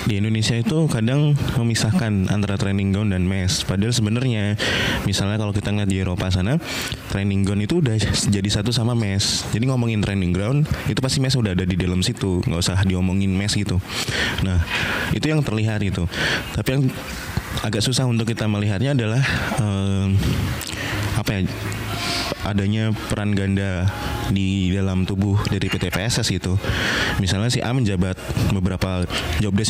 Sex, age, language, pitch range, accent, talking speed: male, 20-39, Indonesian, 95-120 Hz, native, 155 wpm